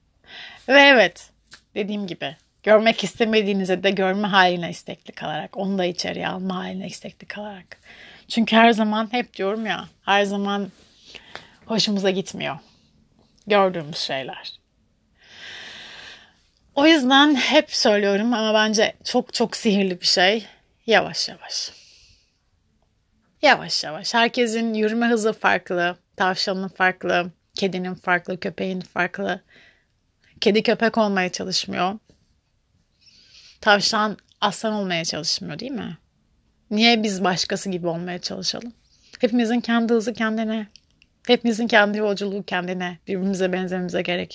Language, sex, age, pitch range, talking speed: Turkish, female, 30-49, 185-225 Hz, 110 wpm